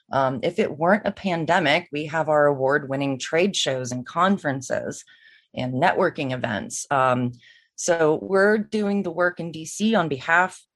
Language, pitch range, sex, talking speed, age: English, 135-175 Hz, female, 150 wpm, 30-49